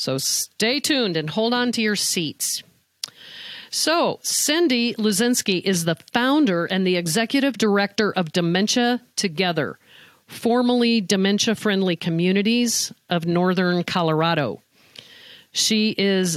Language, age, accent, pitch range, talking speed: English, 50-69, American, 175-230 Hz, 115 wpm